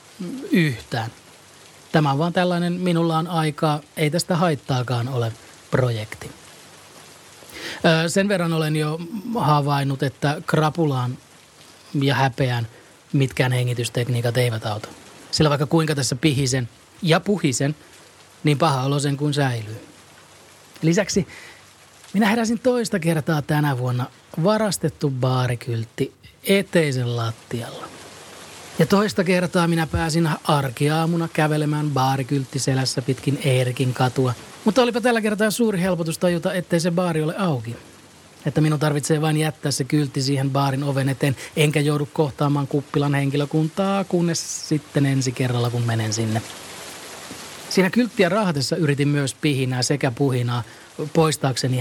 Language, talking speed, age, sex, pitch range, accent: Finnish, 125 wpm, 30-49, male, 130-165 Hz, native